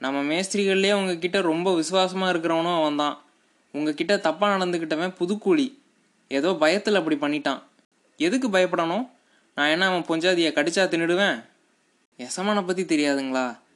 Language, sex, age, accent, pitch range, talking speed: Tamil, male, 20-39, native, 150-185 Hz, 120 wpm